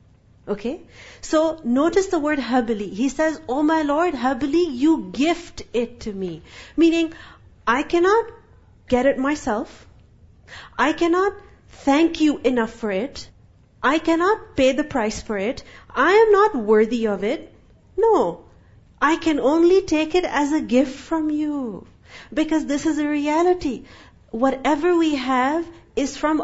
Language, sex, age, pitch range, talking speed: English, female, 40-59, 250-330 Hz, 145 wpm